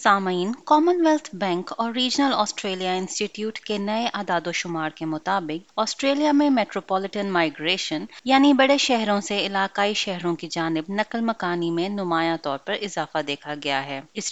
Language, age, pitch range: Urdu, 20-39, 170-245 Hz